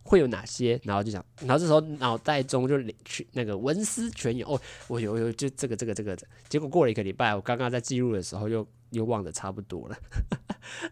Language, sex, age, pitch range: Chinese, male, 20-39, 115-150 Hz